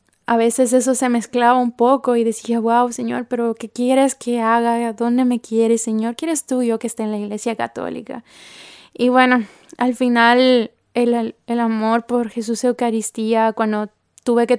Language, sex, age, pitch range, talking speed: Spanish, female, 10-29, 225-250 Hz, 175 wpm